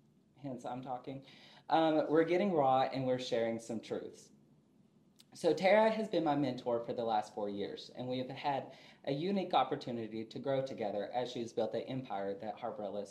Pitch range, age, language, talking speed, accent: 115-160 Hz, 20-39, English, 185 wpm, American